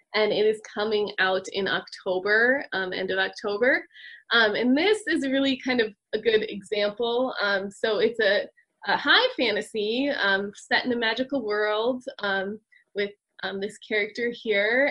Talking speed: 160 wpm